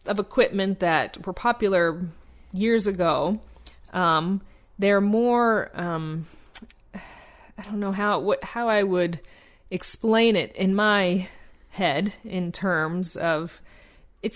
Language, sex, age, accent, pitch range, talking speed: English, female, 40-59, American, 165-210 Hz, 115 wpm